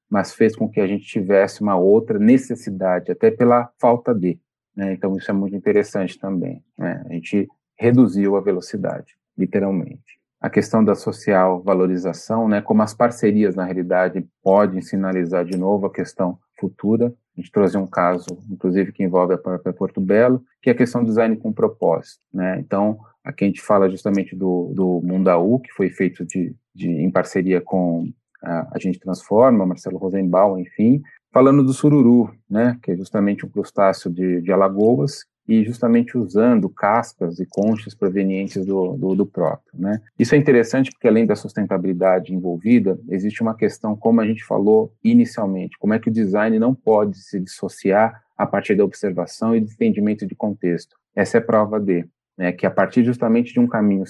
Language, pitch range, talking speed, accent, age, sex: Portuguese, 95-115 Hz, 180 wpm, Brazilian, 40-59, male